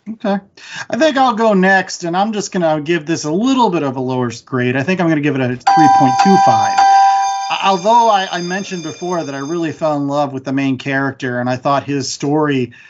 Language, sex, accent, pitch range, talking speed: English, male, American, 155-205 Hz, 230 wpm